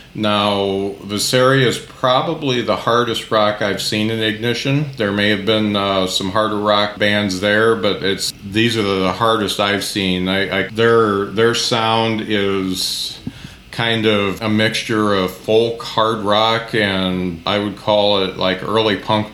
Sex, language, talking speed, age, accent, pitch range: male, English, 160 wpm, 40-59, American, 100-110 Hz